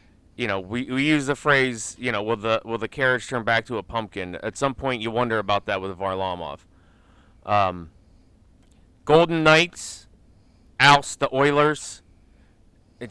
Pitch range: 100-150 Hz